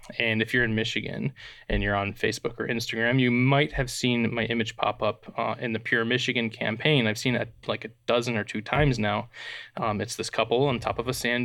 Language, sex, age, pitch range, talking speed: English, male, 20-39, 110-130 Hz, 230 wpm